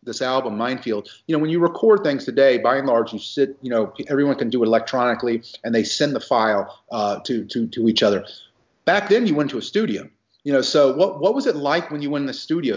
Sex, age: male, 30-49